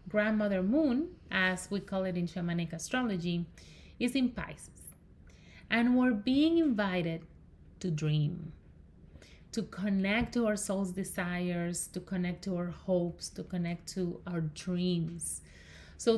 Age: 30-49